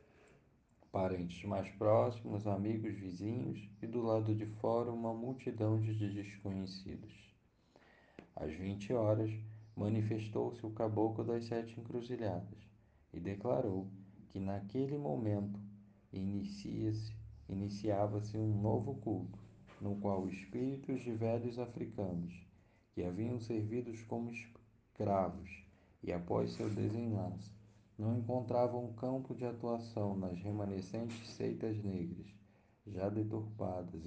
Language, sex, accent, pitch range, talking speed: Portuguese, male, Brazilian, 95-110 Hz, 105 wpm